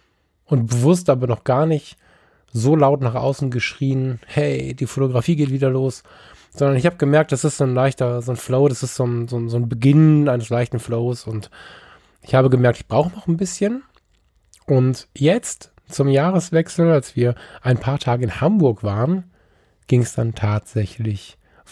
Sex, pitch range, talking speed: male, 115-150 Hz, 185 wpm